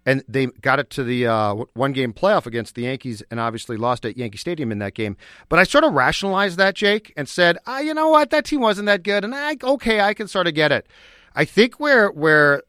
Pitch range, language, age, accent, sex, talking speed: 120-170 Hz, English, 40-59, American, male, 250 wpm